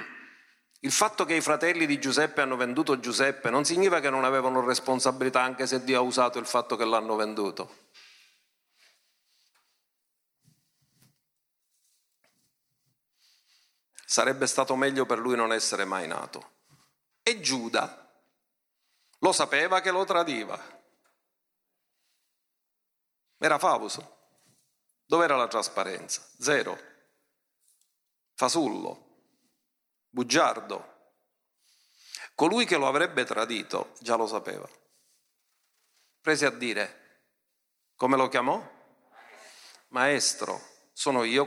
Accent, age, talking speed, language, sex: native, 40-59, 95 wpm, Italian, male